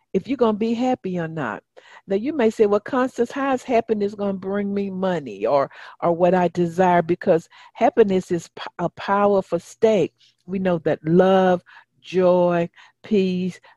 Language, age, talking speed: English, 50-69, 170 wpm